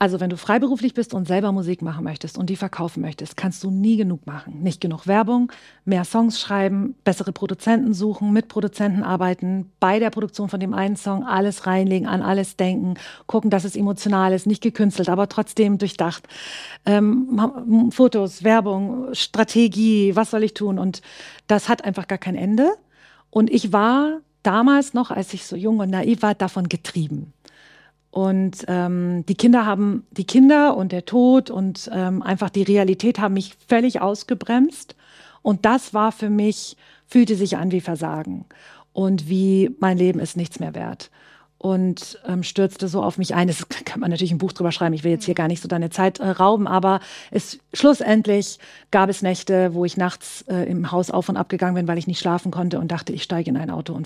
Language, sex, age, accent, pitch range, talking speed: German, female, 50-69, German, 180-215 Hz, 195 wpm